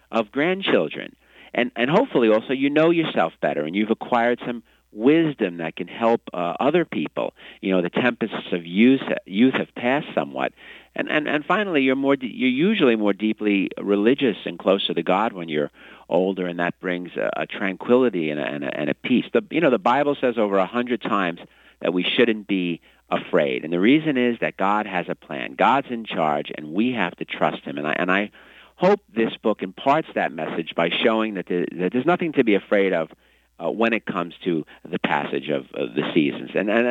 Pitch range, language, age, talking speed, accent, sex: 90-125 Hz, English, 50-69, 210 wpm, American, male